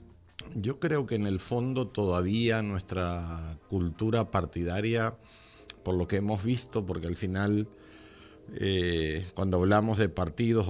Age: 50-69